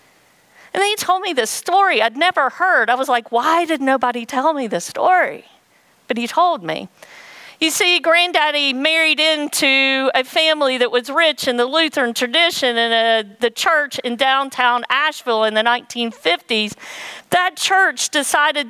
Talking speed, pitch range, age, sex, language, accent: 160 wpm, 240-320 Hz, 50-69, female, English, American